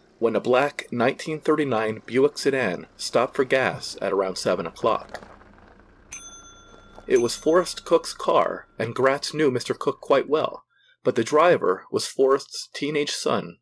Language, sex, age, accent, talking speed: English, male, 40-59, American, 140 wpm